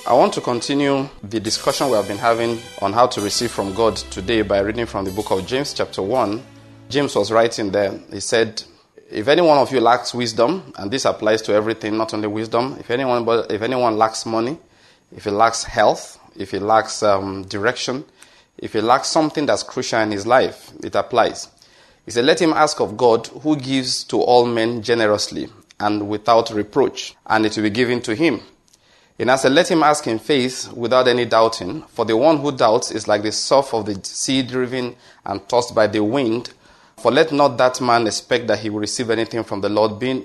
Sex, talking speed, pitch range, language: male, 210 wpm, 105-125 Hz, English